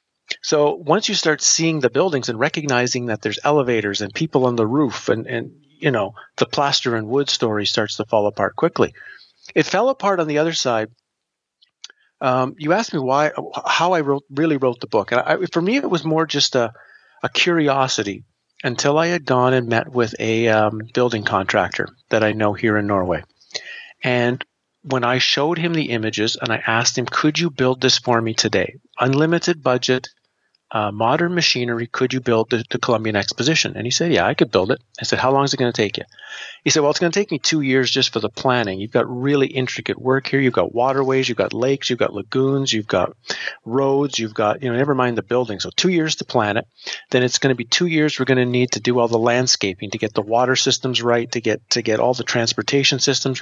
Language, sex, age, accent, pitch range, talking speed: English, male, 40-59, American, 115-145 Hz, 225 wpm